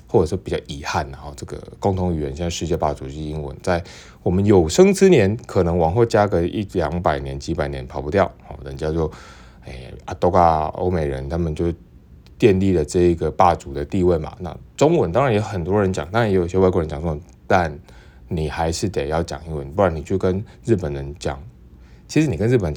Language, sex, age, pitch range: Chinese, male, 20-39, 75-105 Hz